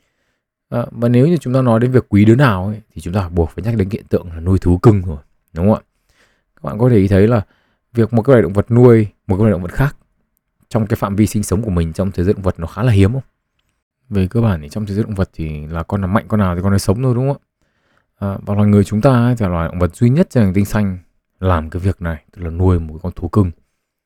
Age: 20-39